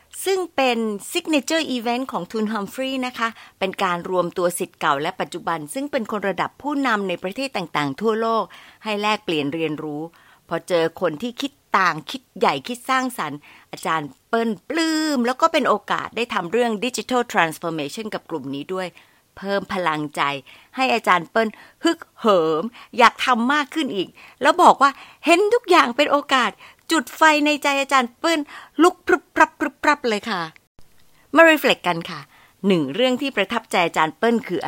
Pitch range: 170-265 Hz